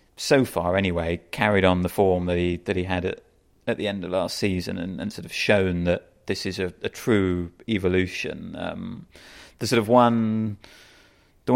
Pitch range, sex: 90-110 Hz, male